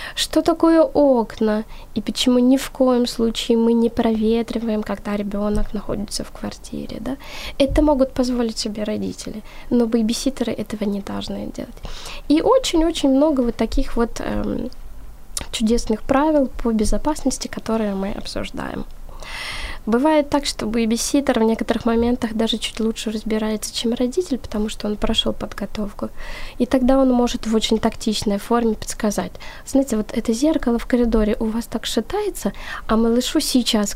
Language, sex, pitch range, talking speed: Ukrainian, female, 210-255 Hz, 150 wpm